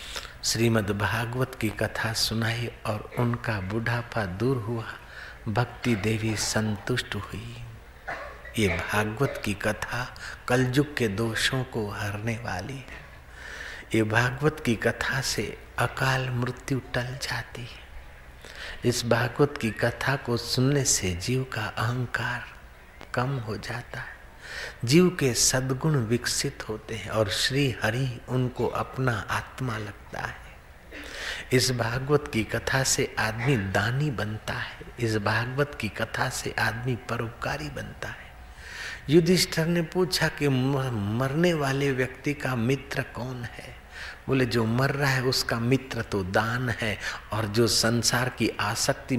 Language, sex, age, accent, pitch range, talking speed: Hindi, male, 60-79, native, 110-130 Hz, 130 wpm